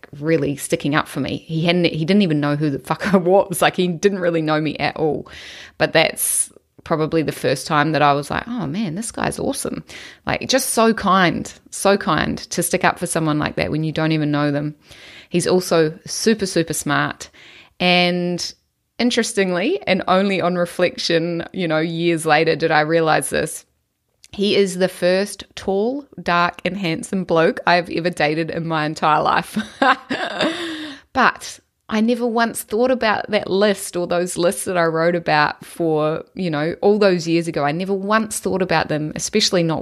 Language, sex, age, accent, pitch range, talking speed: English, female, 20-39, Australian, 155-195 Hz, 185 wpm